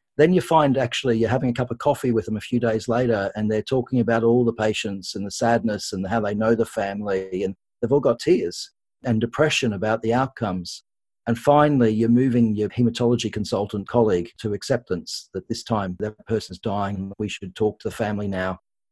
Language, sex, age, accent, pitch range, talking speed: English, male, 40-59, Australian, 105-130 Hz, 205 wpm